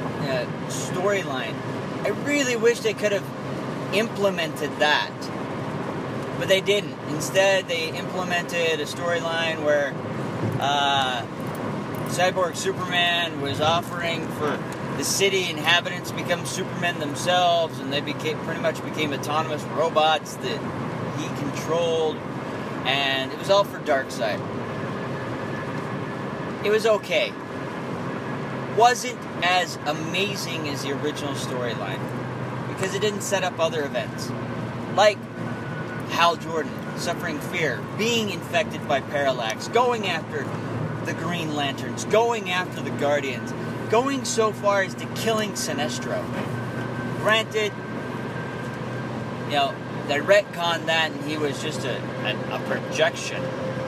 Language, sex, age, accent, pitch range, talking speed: English, male, 40-59, American, 135-185 Hz, 115 wpm